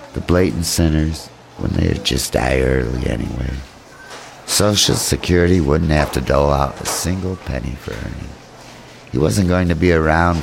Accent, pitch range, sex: American, 70-90 Hz, male